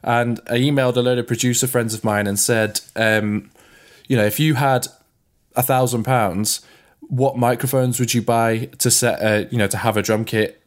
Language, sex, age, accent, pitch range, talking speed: English, male, 20-39, British, 105-125 Hz, 200 wpm